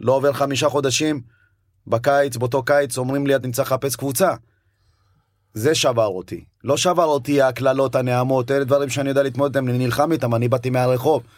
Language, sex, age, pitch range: Hebrew, male, 30-49, 110-140 Hz